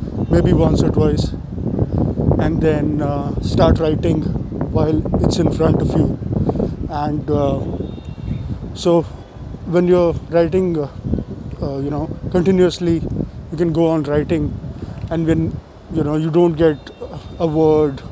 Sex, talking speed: male, 135 wpm